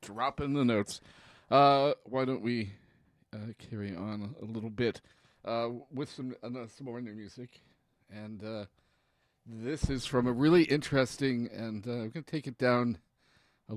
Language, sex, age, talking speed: English, male, 40-59, 165 wpm